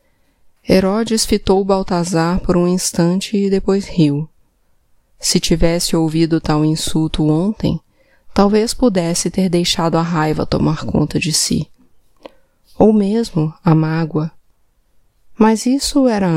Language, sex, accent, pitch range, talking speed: Portuguese, female, Brazilian, 160-200 Hz, 115 wpm